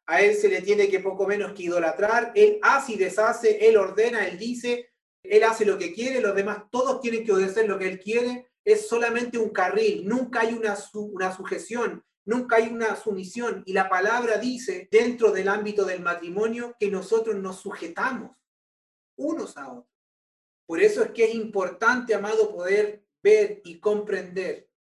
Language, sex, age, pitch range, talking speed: Spanish, male, 30-49, 190-245 Hz, 180 wpm